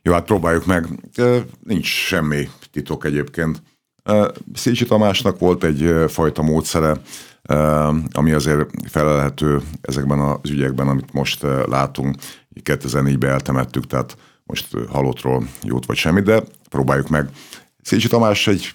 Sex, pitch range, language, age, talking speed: male, 65-75 Hz, Hungarian, 50-69, 120 wpm